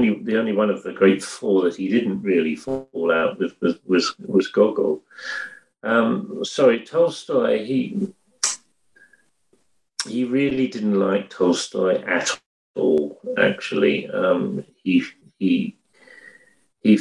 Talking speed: 115 wpm